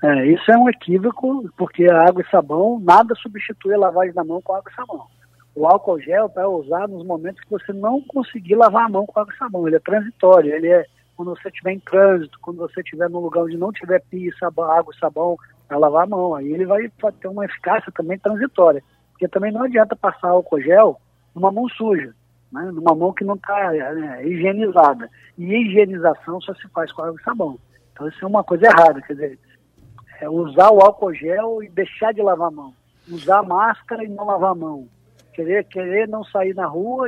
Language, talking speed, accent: Portuguese, 215 wpm, Brazilian